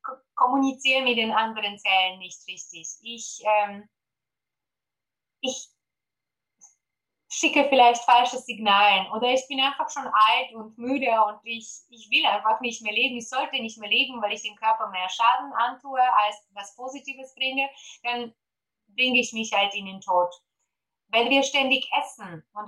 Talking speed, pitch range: 155 wpm, 195-260 Hz